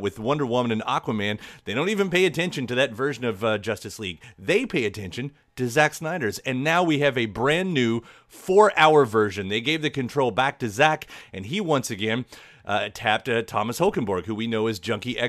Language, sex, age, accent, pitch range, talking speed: English, male, 30-49, American, 110-155 Hz, 210 wpm